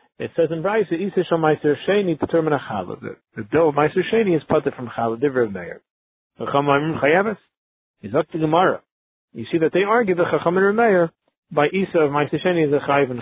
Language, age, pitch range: English, 40-59, 130-170 Hz